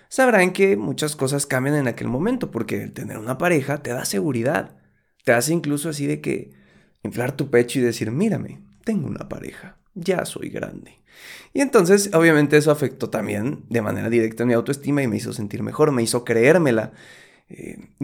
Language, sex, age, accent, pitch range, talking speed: Spanish, male, 30-49, Mexican, 120-185 Hz, 180 wpm